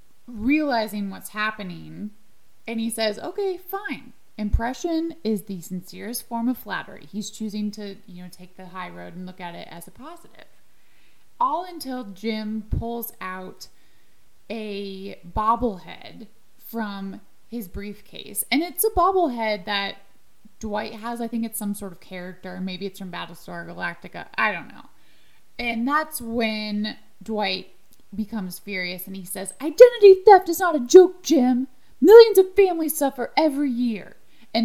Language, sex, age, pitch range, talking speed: English, female, 20-39, 195-250 Hz, 150 wpm